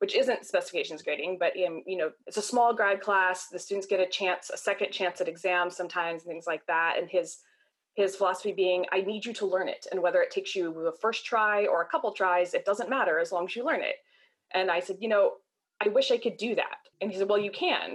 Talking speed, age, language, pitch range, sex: 255 wpm, 20-39, English, 185-250 Hz, female